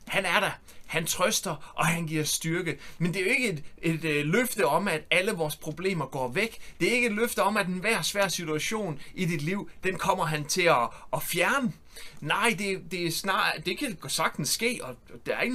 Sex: male